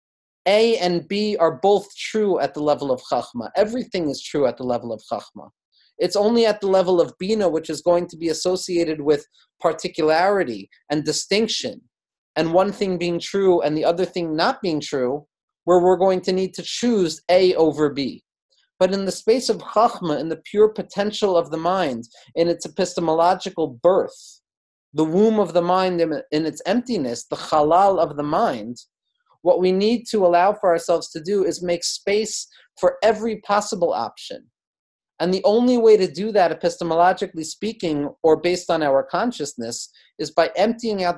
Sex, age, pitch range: male, 30-49, 155-200 Hz